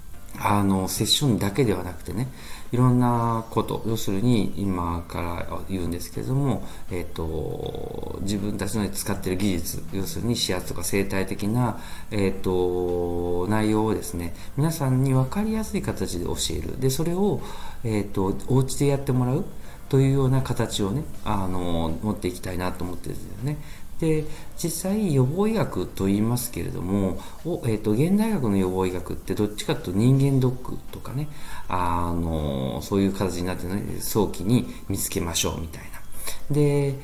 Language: Japanese